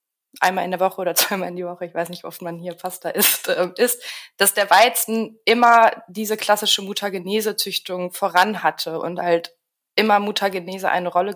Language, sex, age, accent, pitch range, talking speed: German, female, 20-39, German, 180-215 Hz, 180 wpm